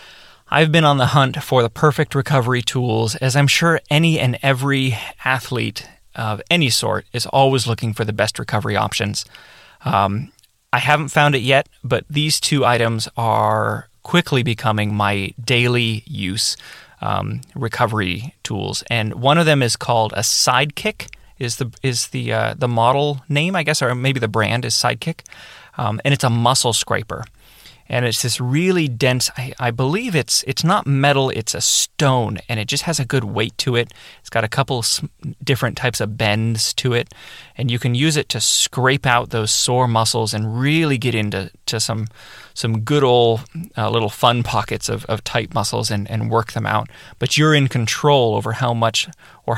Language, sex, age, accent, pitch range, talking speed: English, male, 30-49, American, 110-140 Hz, 185 wpm